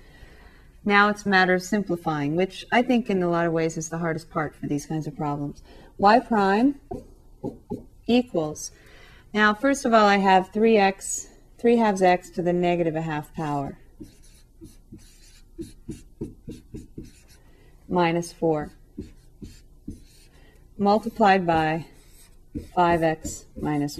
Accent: American